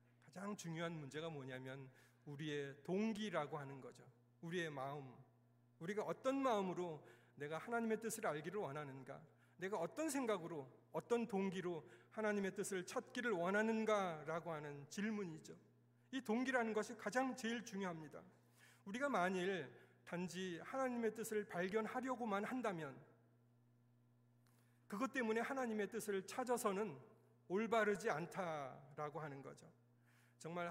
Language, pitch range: Korean, 135-210 Hz